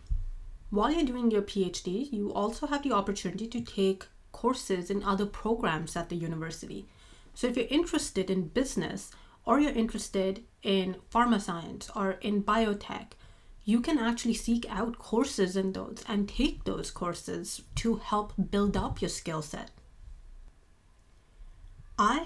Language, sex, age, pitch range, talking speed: English, female, 30-49, 180-215 Hz, 145 wpm